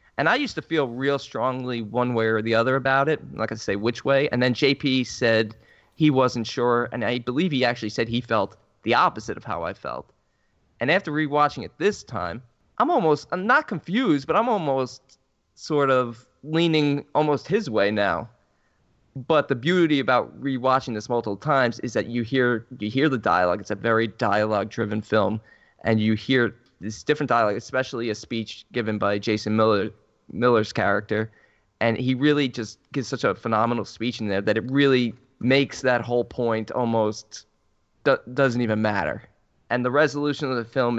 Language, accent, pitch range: English, American, 110-135 Hz